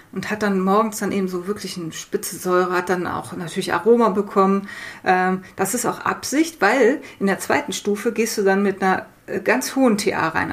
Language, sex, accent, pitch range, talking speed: German, female, German, 185-220 Hz, 200 wpm